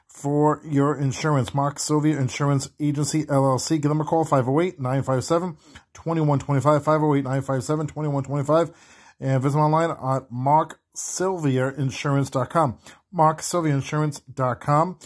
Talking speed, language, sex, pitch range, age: 85 wpm, English, male, 125-155 Hz, 40-59